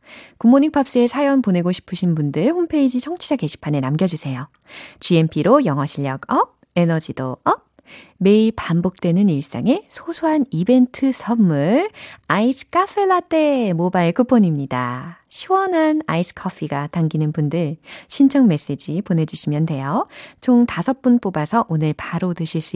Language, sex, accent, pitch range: Korean, female, native, 160-255 Hz